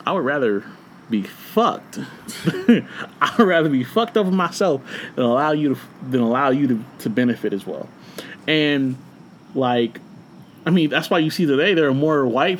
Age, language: 20-39, English